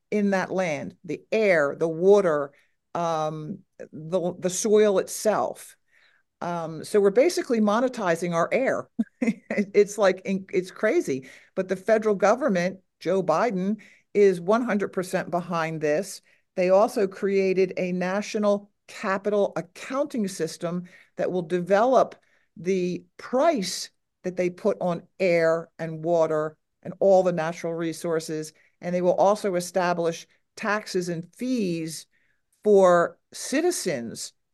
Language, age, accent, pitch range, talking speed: English, 50-69, American, 170-200 Hz, 120 wpm